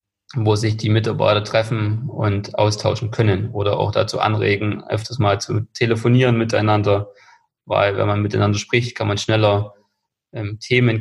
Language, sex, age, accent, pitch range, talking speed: German, male, 20-39, German, 110-125 Hz, 145 wpm